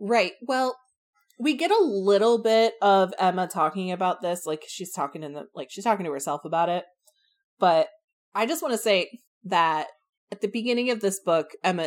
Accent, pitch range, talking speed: American, 155-200 Hz, 190 wpm